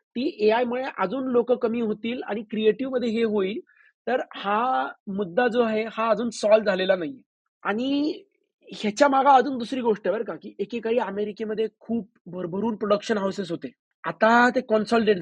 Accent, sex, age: native, male, 30-49